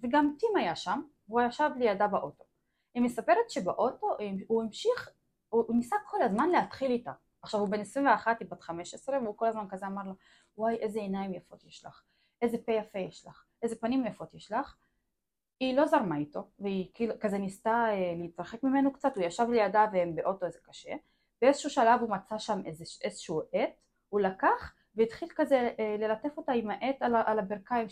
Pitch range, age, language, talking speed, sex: 195-270 Hz, 20-39, Hebrew, 180 wpm, female